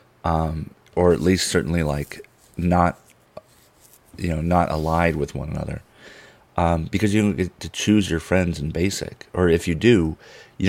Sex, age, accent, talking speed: male, 30-49, American, 170 wpm